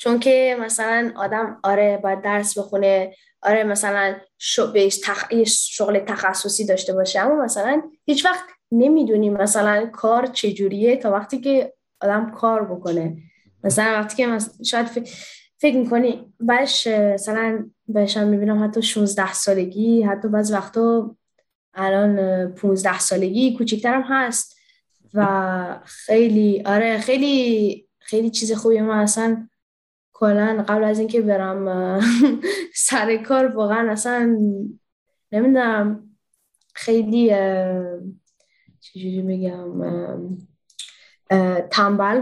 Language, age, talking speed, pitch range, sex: Persian, 10-29, 100 wpm, 200-240 Hz, female